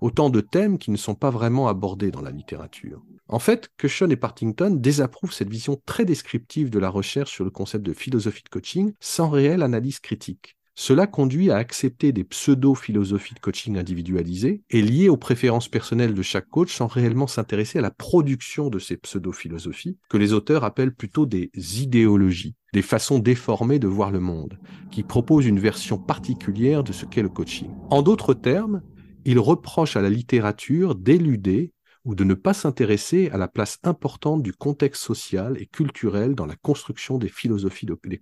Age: 40-59